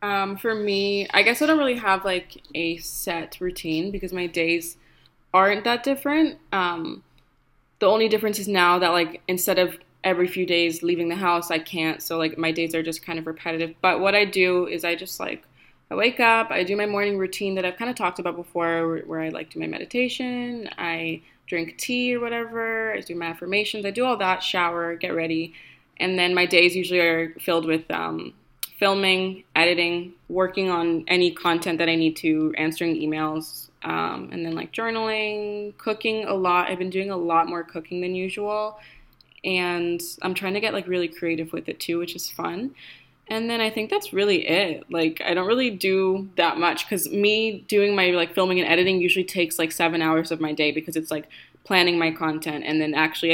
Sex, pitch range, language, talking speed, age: female, 165-200 Hz, English, 205 wpm, 20-39